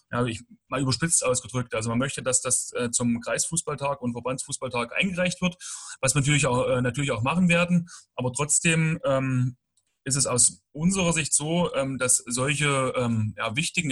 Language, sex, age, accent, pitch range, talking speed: German, male, 30-49, German, 125-155 Hz, 160 wpm